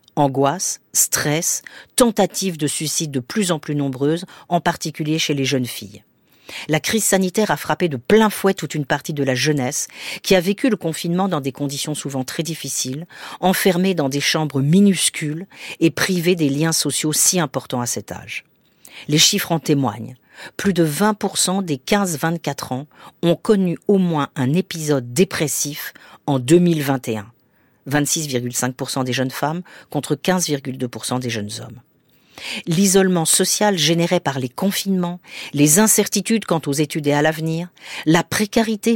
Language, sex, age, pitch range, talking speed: French, female, 40-59, 140-185 Hz, 155 wpm